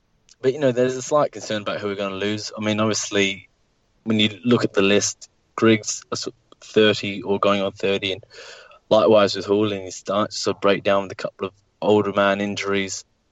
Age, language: 20-39, English